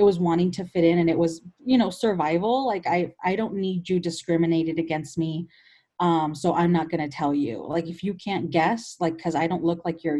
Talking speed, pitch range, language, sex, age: 240 wpm, 165-190 Hz, English, female, 30-49